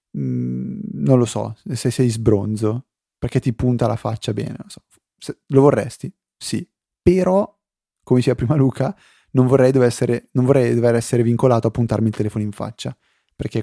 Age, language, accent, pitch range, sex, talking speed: 20-39, Italian, native, 110-130 Hz, male, 165 wpm